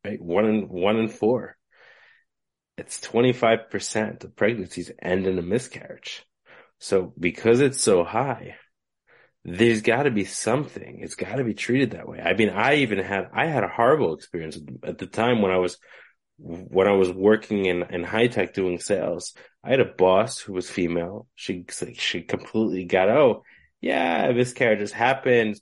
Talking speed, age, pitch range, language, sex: 175 wpm, 30-49, 95-120 Hz, English, male